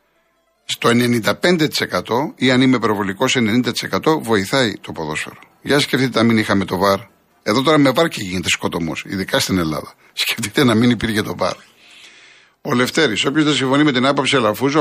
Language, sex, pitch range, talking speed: Greek, male, 110-140 Hz, 165 wpm